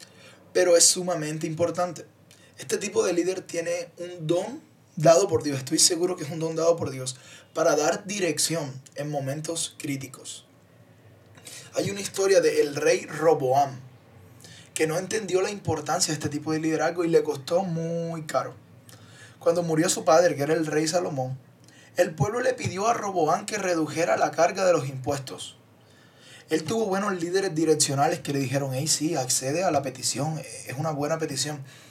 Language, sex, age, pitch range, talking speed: Spanish, male, 20-39, 140-175 Hz, 170 wpm